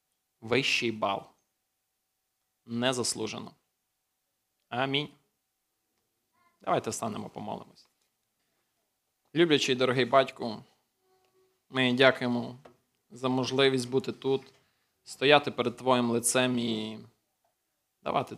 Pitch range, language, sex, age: 115-130 Hz, Ukrainian, male, 20-39